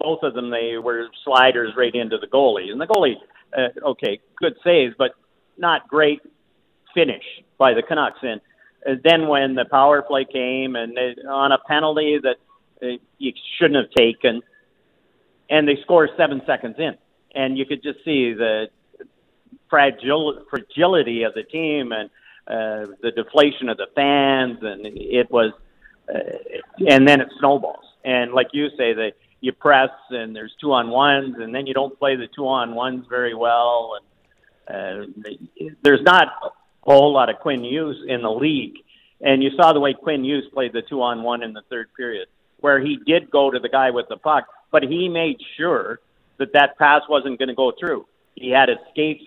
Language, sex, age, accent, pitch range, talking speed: English, male, 50-69, American, 125-145 Hz, 175 wpm